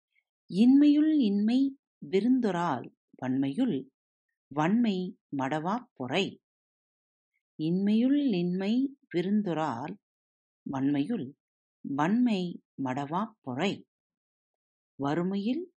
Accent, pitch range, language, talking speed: native, 155-255 Hz, Tamil, 55 wpm